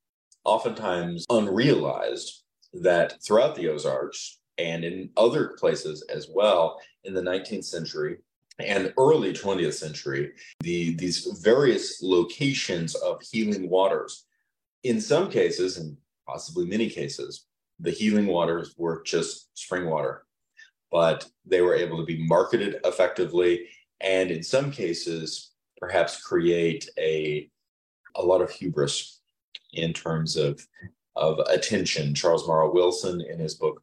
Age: 30-49